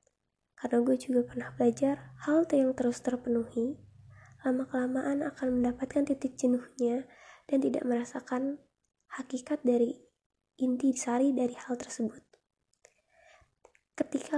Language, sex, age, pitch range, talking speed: Indonesian, female, 20-39, 240-275 Hz, 110 wpm